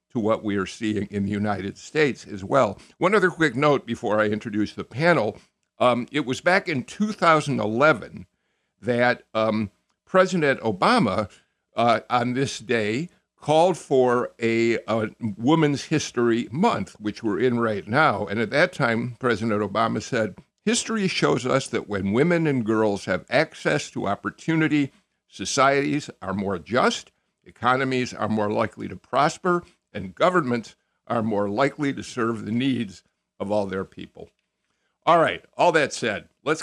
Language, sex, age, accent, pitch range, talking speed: English, male, 60-79, American, 105-140 Hz, 155 wpm